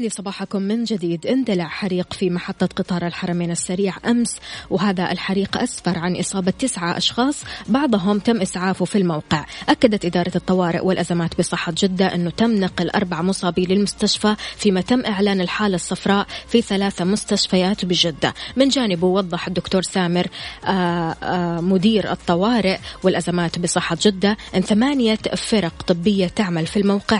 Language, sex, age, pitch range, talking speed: Arabic, female, 20-39, 175-205 Hz, 140 wpm